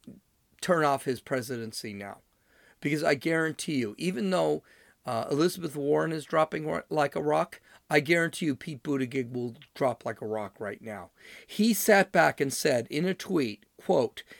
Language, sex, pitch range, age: English, male, 130-195 Hz, 40-59